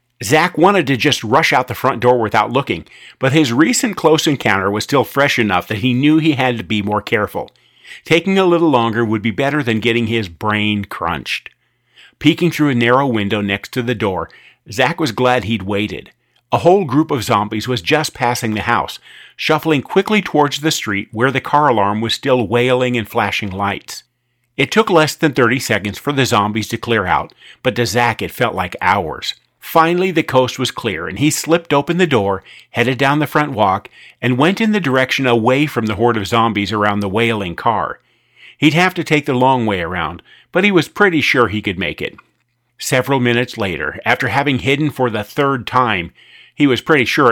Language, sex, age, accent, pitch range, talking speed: English, male, 50-69, American, 115-150 Hz, 205 wpm